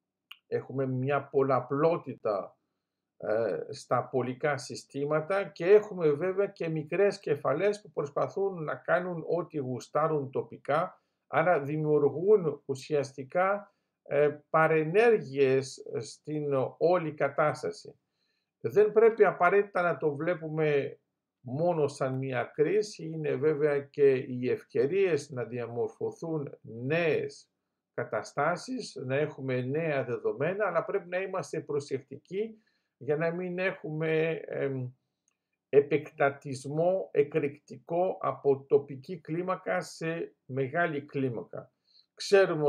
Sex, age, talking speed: male, 50-69, 95 wpm